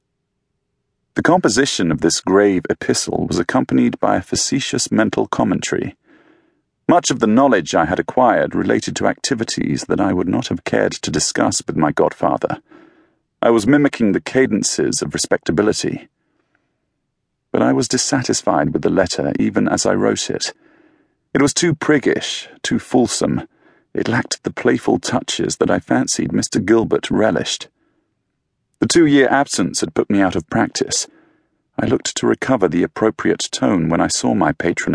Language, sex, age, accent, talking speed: English, male, 40-59, British, 155 wpm